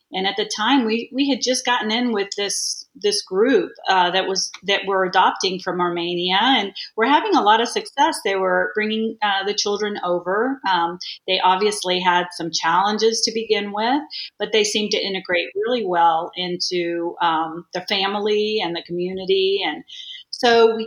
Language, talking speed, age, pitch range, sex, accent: English, 180 wpm, 40-59, 180-230 Hz, female, American